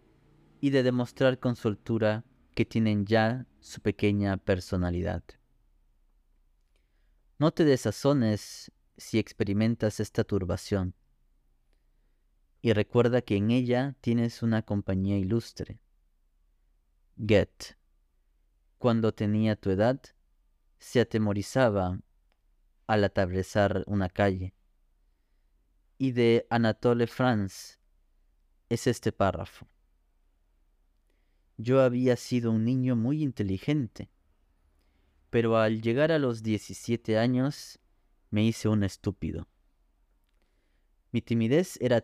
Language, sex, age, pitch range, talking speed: Spanish, male, 30-49, 75-120 Hz, 95 wpm